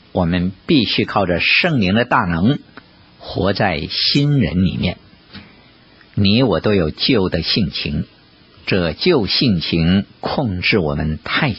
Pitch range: 80-125 Hz